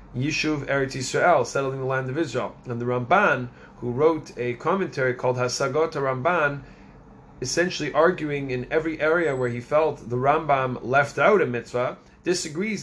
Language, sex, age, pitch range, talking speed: English, male, 30-49, 130-165 Hz, 155 wpm